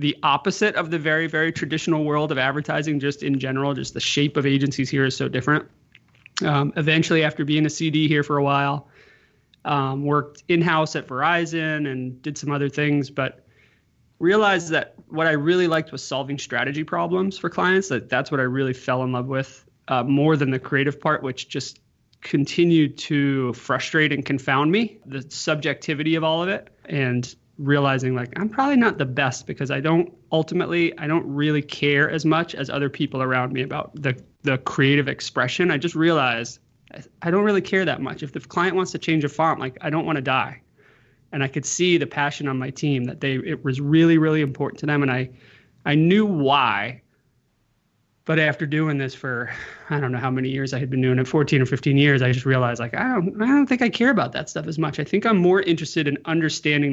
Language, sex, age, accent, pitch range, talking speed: English, male, 30-49, American, 135-160 Hz, 210 wpm